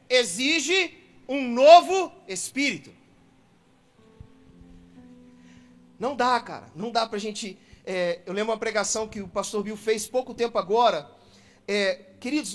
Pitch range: 220-300 Hz